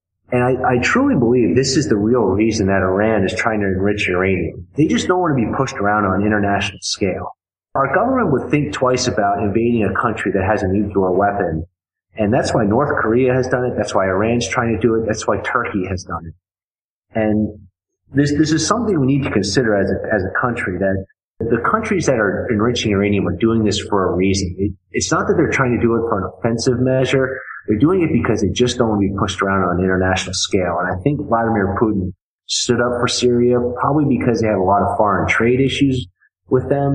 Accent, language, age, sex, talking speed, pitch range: American, English, 30-49, male, 230 wpm, 95-120 Hz